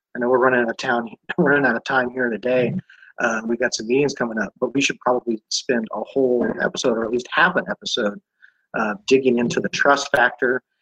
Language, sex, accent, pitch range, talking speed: English, male, American, 115-140 Hz, 205 wpm